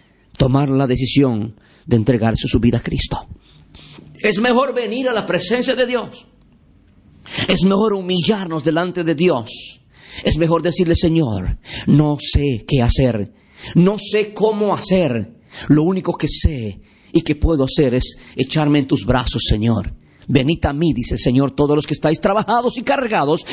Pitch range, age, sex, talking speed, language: 130-205 Hz, 50-69, male, 160 wpm, Spanish